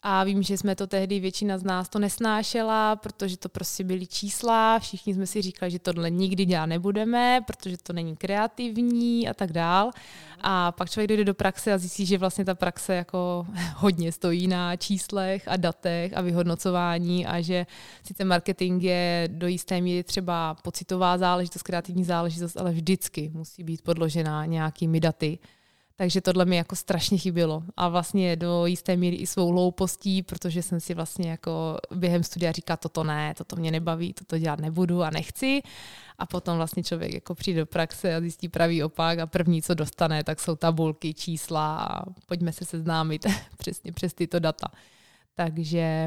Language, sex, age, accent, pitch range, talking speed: Czech, female, 20-39, native, 170-190 Hz, 175 wpm